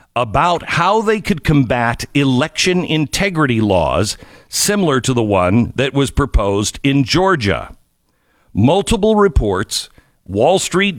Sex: male